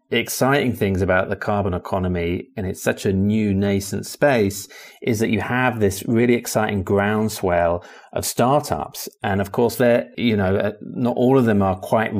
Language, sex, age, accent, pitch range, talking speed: English, male, 30-49, British, 95-110 Hz, 170 wpm